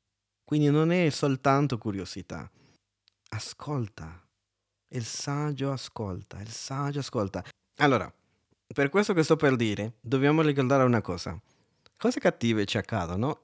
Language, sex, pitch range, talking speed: Italian, male, 105-145 Hz, 120 wpm